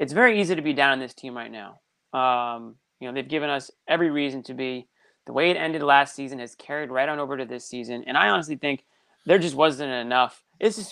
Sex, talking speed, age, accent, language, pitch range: male, 245 wpm, 30-49, American, English, 130-160 Hz